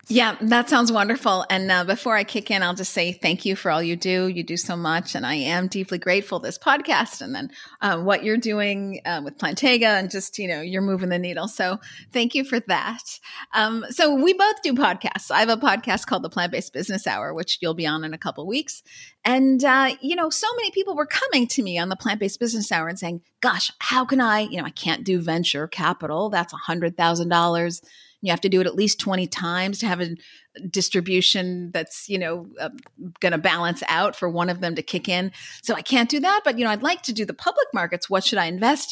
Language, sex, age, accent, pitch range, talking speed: English, female, 40-59, American, 175-235 Hz, 240 wpm